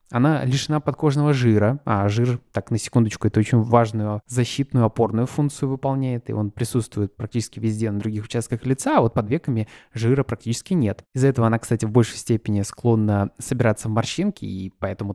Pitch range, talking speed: 110-135 Hz, 180 wpm